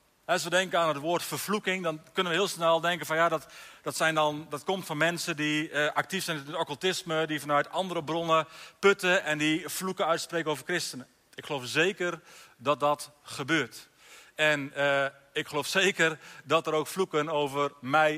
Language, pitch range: Dutch, 150-180 Hz